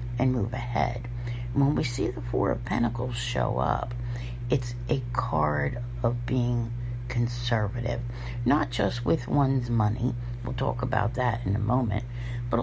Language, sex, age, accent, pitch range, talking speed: English, female, 60-79, American, 120-125 Hz, 145 wpm